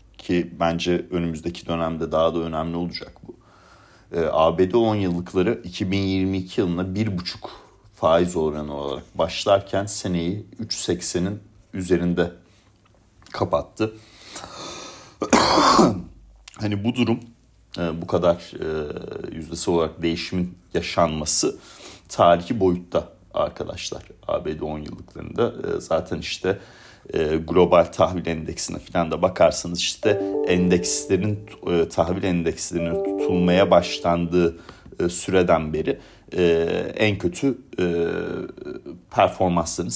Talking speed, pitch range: 90 wpm, 85-95 Hz